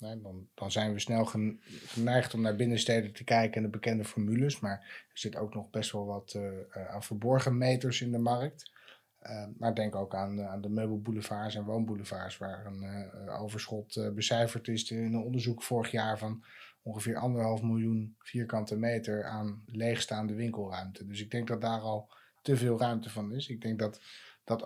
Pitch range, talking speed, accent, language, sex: 105-120 Hz, 190 wpm, Dutch, Dutch, male